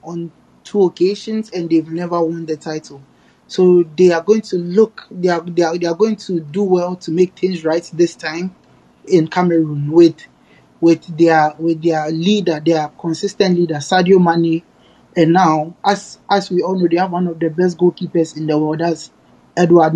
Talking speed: 190 wpm